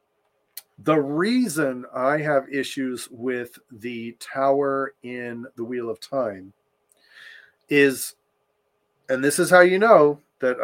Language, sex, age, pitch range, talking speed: English, male, 40-59, 135-220 Hz, 120 wpm